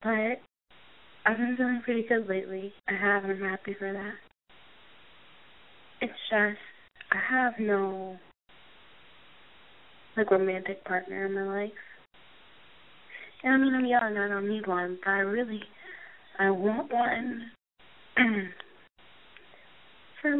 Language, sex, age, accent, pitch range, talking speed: English, female, 20-39, American, 195-240 Hz, 120 wpm